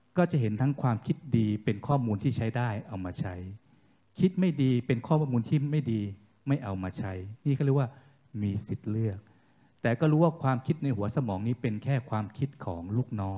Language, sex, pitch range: Thai, male, 105-145 Hz